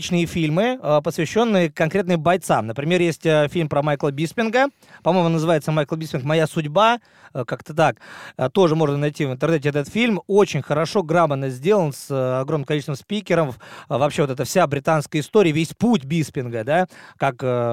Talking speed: 150 wpm